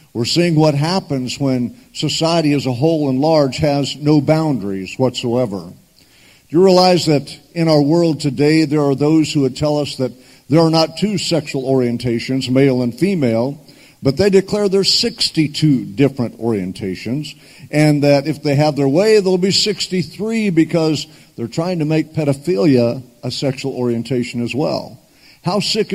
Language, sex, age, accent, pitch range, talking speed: English, male, 50-69, American, 130-165 Hz, 160 wpm